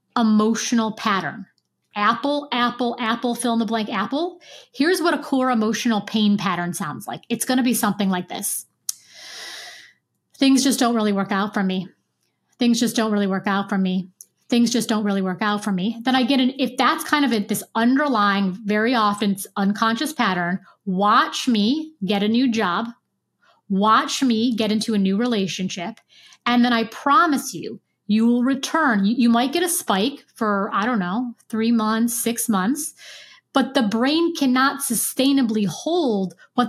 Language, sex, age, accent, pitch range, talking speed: English, female, 30-49, American, 210-265 Hz, 170 wpm